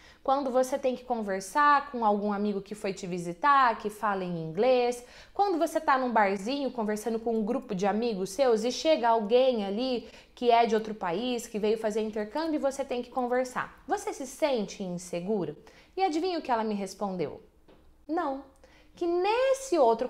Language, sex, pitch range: Portuguese, female, 225-325 Hz